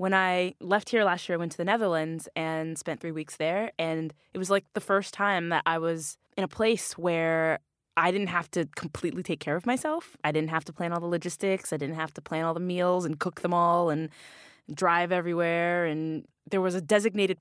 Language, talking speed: English, 230 wpm